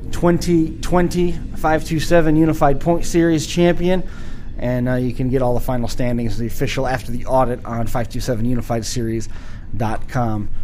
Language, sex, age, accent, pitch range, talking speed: English, male, 30-49, American, 115-145 Hz, 125 wpm